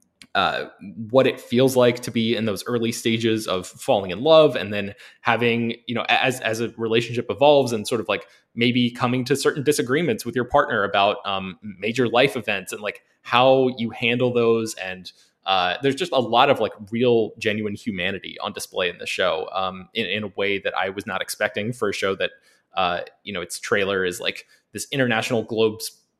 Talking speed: 200 wpm